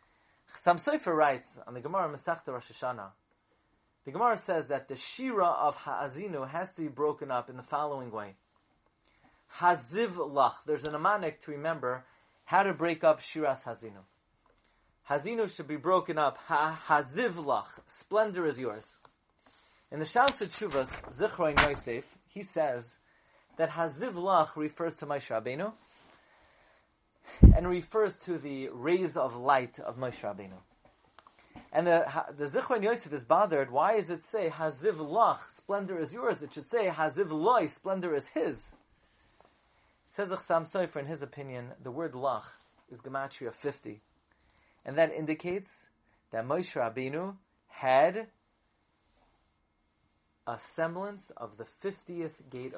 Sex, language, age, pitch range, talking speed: male, English, 30-49, 130-180 Hz, 135 wpm